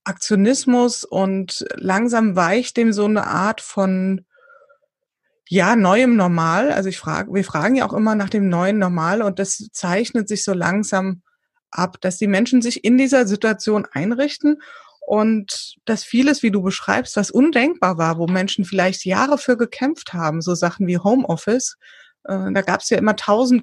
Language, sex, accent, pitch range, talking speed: German, female, German, 190-245 Hz, 165 wpm